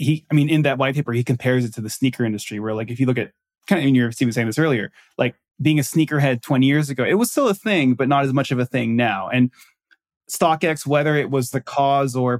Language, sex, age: English, male, 20-39